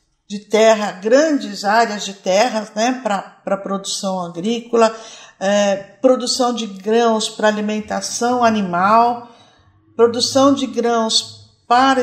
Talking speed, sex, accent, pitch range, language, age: 100 wpm, female, Brazilian, 210-265 Hz, Portuguese, 50-69